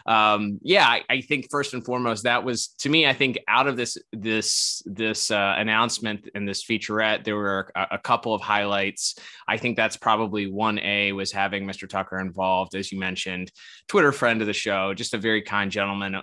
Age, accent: 20-39, American